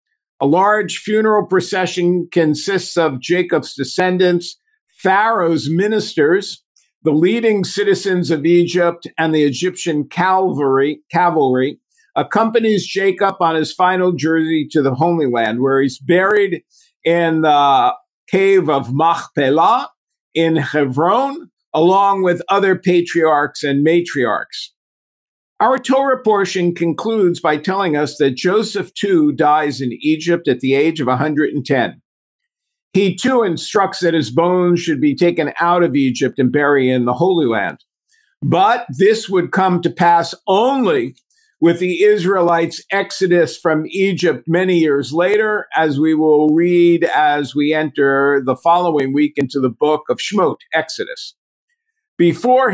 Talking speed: 130 wpm